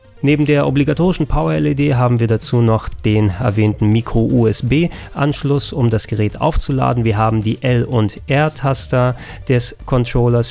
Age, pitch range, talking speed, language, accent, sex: 30-49, 110-135 Hz, 130 wpm, German, German, male